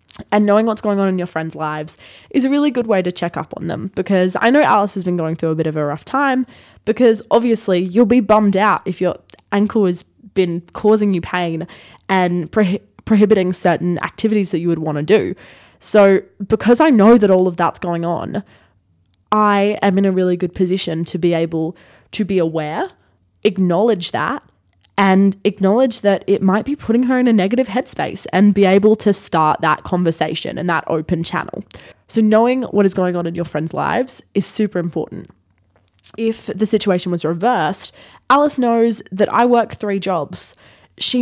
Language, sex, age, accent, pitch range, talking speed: English, female, 20-39, Australian, 180-225 Hz, 190 wpm